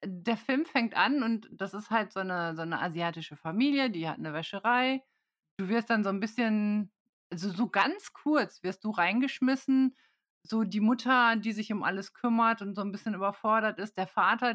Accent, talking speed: German, 195 wpm